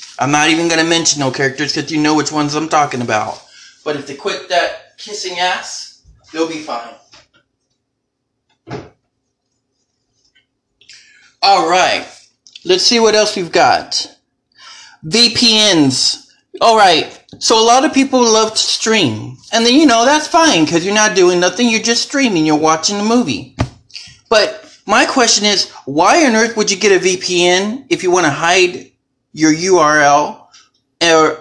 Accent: American